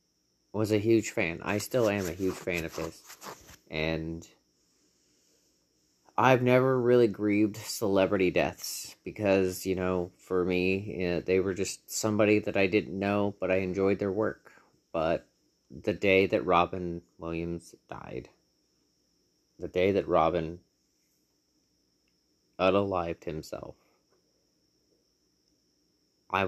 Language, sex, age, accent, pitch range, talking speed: English, male, 30-49, American, 85-105 Hz, 115 wpm